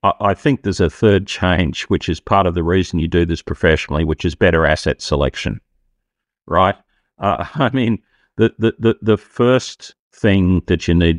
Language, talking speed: English, 180 wpm